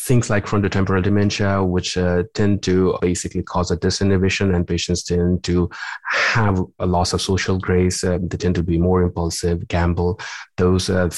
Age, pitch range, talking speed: 30-49, 85-100 Hz, 170 wpm